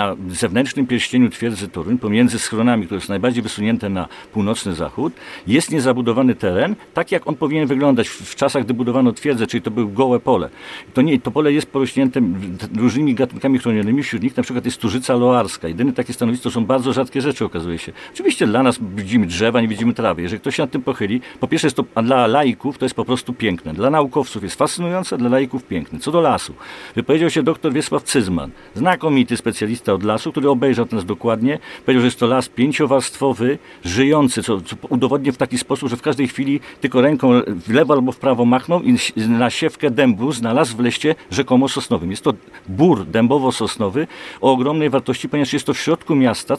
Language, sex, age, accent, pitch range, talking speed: Polish, male, 50-69, native, 120-145 Hz, 200 wpm